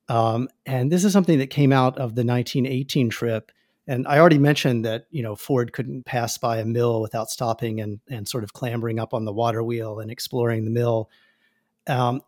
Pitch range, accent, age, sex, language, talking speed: 115-145 Hz, American, 40-59, male, English, 205 wpm